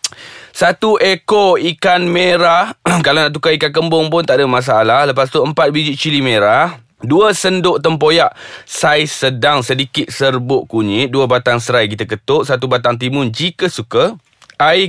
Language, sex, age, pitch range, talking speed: Malay, male, 20-39, 130-165 Hz, 155 wpm